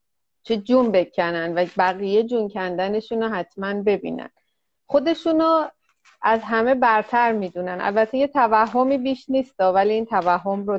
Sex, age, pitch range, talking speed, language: female, 30-49, 185-215 Hz, 140 wpm, Persian